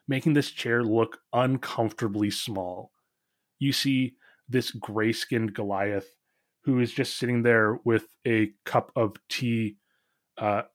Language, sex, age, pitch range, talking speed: English, male, 30-49, 115-135 Hz, 130 wpm